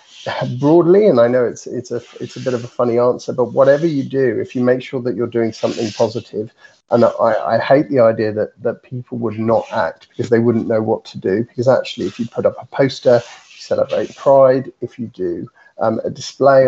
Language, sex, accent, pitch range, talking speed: English, male, British, 115-140 Hz, 225 wpm